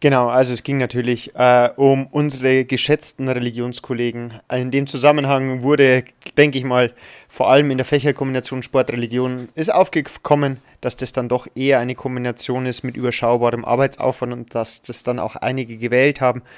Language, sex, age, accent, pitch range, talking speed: German, male, 30-49, German, 120-140 Hz, 160 wpm